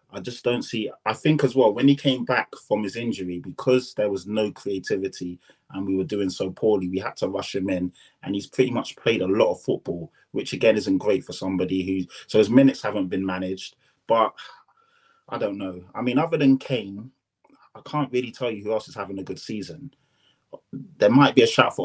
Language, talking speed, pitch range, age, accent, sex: English, 220 wpm, 95-125 Hz, 20-39, British, male